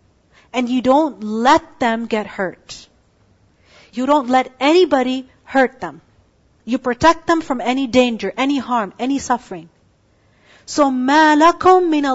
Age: 40-59